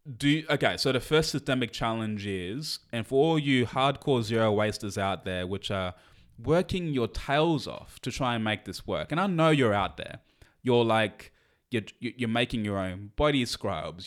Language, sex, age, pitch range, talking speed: English, male, 20-39, 105-140 Hz, 190 wpm